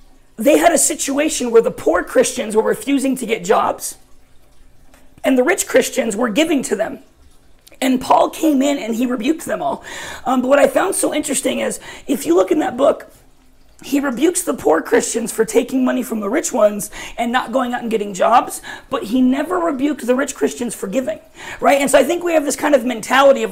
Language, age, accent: English, 40-59, American